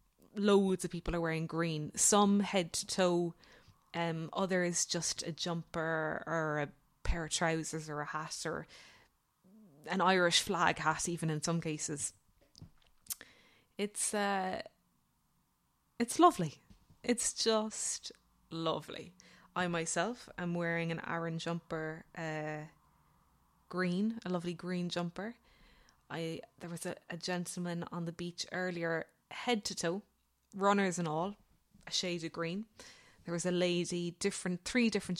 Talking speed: 135 wpm